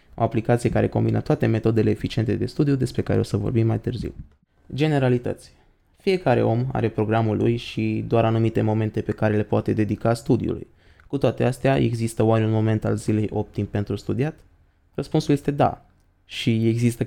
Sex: male